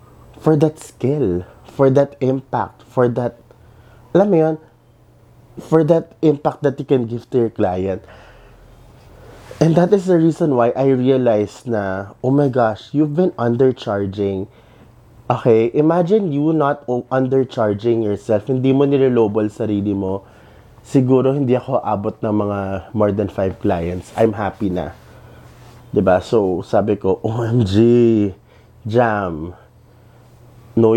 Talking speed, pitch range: 130 wpm, 110-135 Hz